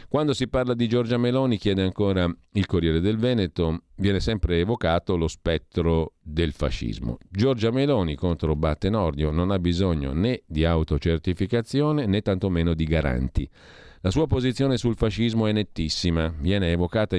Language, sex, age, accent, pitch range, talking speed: Italian, male, 40-59, native, 85-110 Hz, 145 wpm